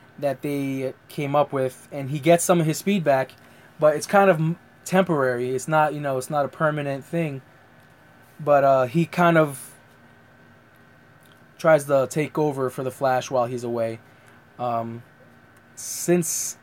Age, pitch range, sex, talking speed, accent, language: 20-39, 135-160 Hz, male, 155 wpm, American, English